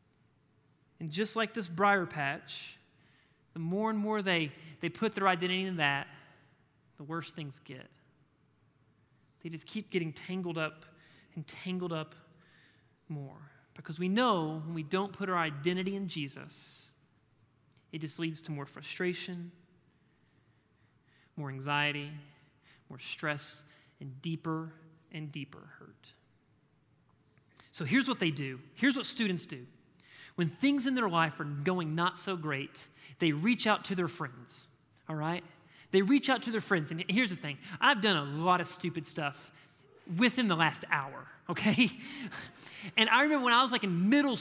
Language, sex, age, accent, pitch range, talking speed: English, male, 30-49, American, 145-215 Hz, 155 wpm